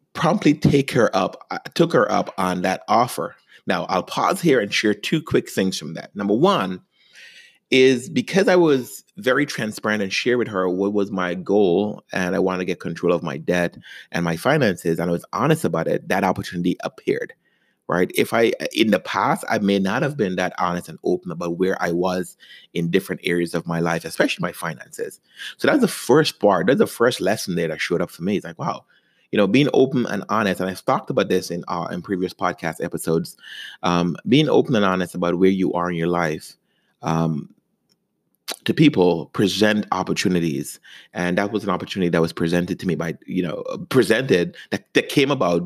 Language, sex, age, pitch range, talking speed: English, male, 30-49, 85-95 Hz, 205 wpm